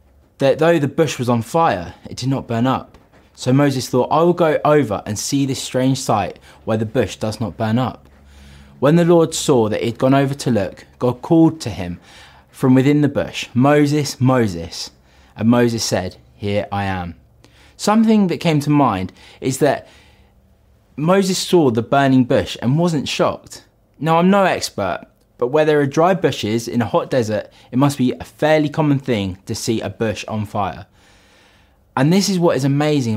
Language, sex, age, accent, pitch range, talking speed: English, male, 20-39, British, 100-150 Hz, 190 wpm